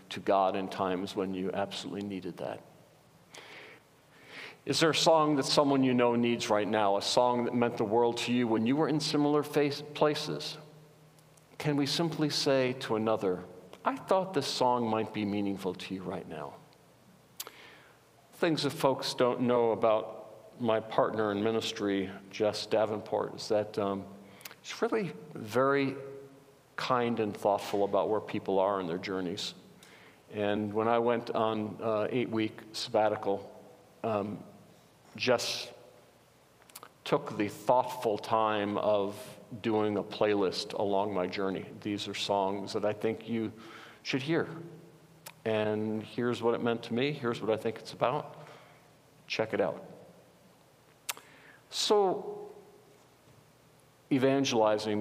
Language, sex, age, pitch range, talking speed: English, male, 50-69, 100-140 Hz, 140 wpm